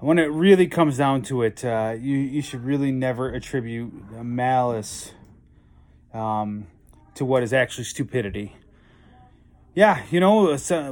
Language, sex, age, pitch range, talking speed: English, male, 30-49, 115-140 Hz, 135 wpm